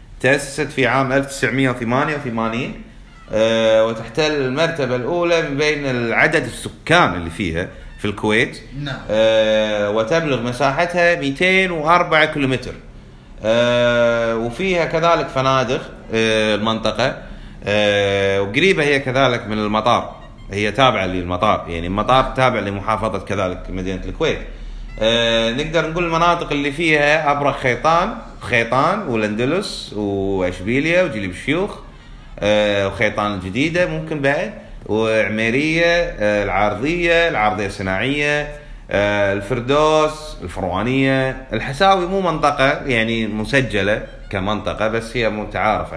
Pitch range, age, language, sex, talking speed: 105-145 Hz, 30-49, Arabic, male, 100 wpm